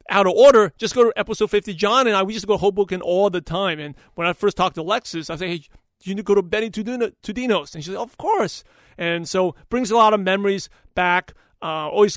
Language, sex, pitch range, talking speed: English, male, 175-215 Hz, 275 wpm